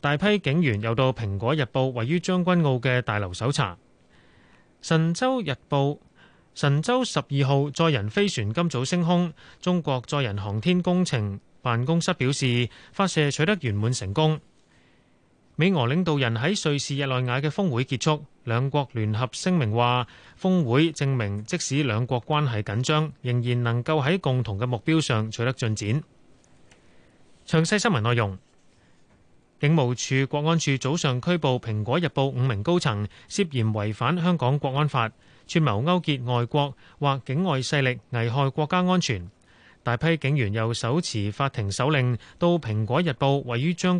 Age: 30-49